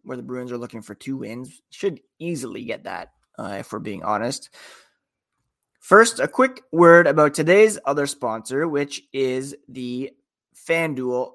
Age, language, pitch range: 30-49, English, 130-170 Hz